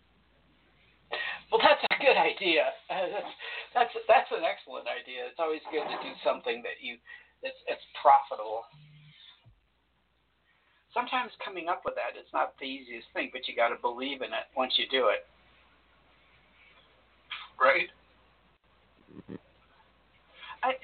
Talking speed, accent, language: 130 wpm, American, English